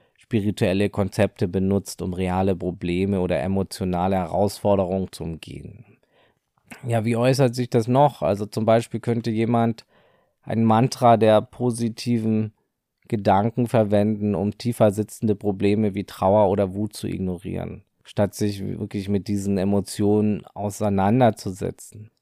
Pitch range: 100-115 Hz